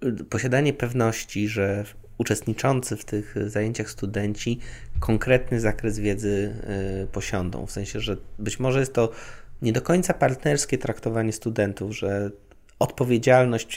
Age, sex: 20-39, male